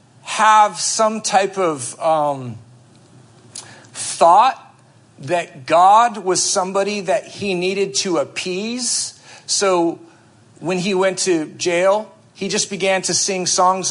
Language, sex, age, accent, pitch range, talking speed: English, male, 50-69, American, 155-240 Hz, 115 wpm